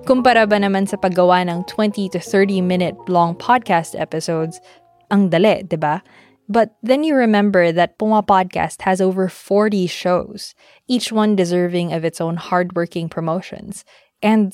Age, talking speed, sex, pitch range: 20-39, 145 wpm, female, 175-215 Hz